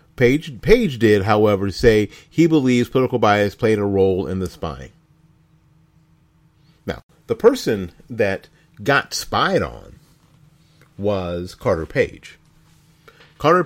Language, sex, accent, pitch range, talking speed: English, male, American, 100-155 Hz, 115 wpm